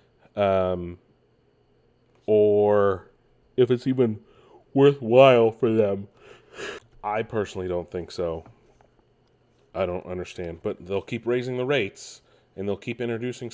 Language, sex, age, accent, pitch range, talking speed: English, male, 30-49, American, 95-125 Hz, 115 wpm